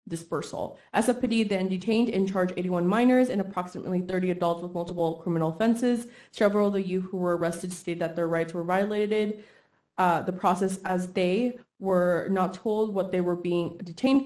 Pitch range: 175-210 Hz